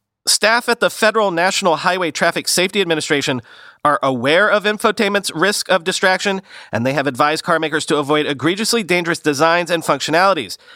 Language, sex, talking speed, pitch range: English, male, 155 wpm, 135-200 Hz